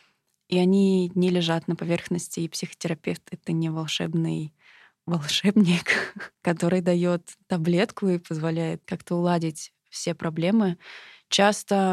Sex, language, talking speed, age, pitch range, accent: female, Russian, 110 wpm, 20-39, 165-190 Hz, native